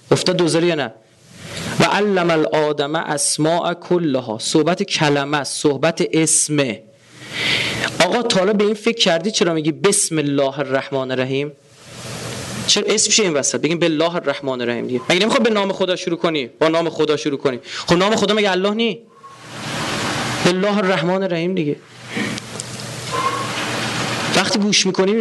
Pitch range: 140-190 Hz